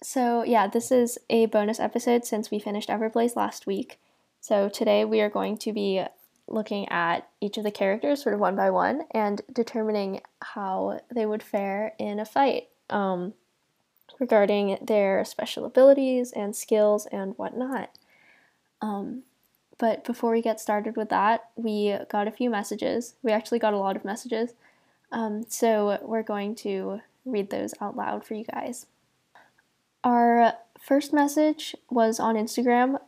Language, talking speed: English, 160 wpm